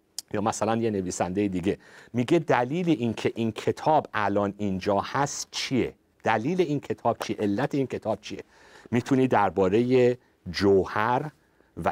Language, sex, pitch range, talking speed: Persian, male, 95-125 Hz, 130 wpm